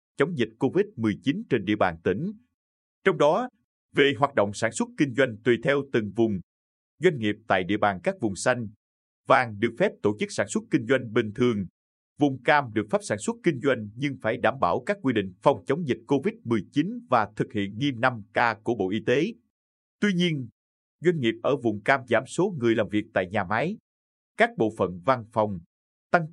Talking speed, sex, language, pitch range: 200 wpm, male, Vietnamese, 100-145 Hz